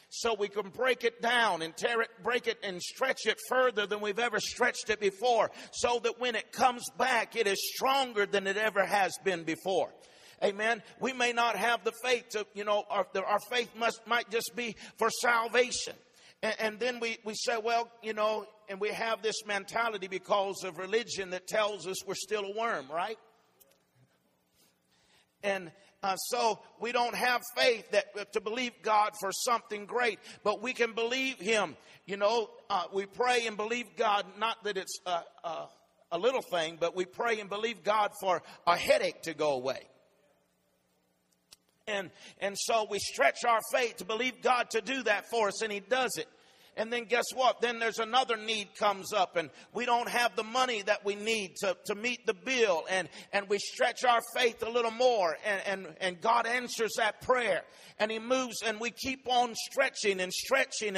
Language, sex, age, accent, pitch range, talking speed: English, male, 50-69, American, 200-240 Hz, 195 wpm